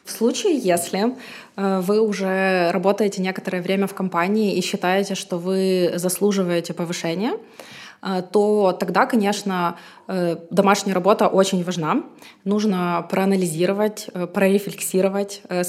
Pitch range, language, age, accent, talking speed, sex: 185-215 Hz, Russian, 20-39, native, 100 wpm, female